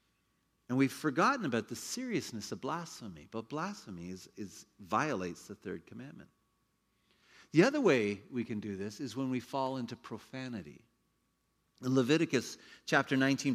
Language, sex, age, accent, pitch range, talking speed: English, male, 40-59, American, 110-155 Hz, 145 wpm